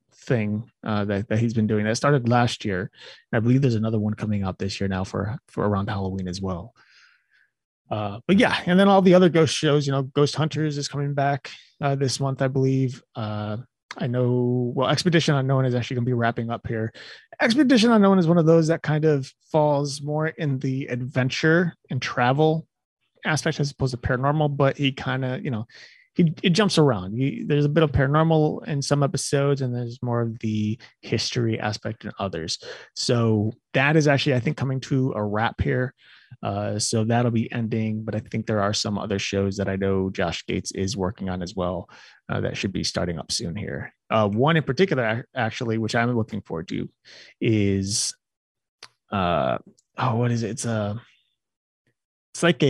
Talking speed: 195 wpm